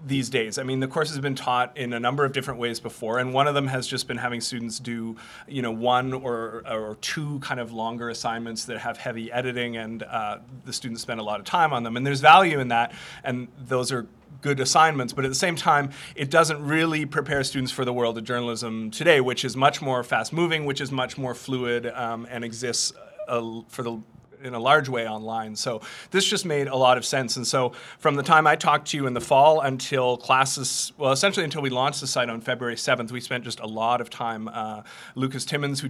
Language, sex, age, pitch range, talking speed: English, male, 30-49, 115-140 Hz, 235 wpm